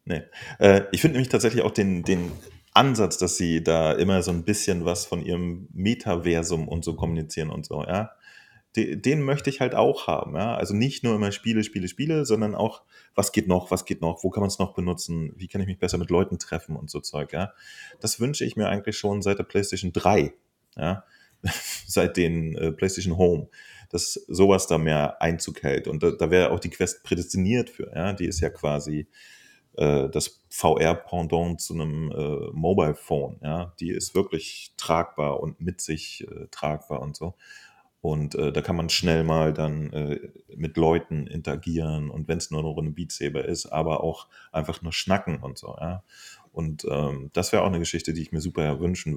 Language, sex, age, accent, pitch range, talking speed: German, male, 30-49, German, 80-95 Hz, 195 wpm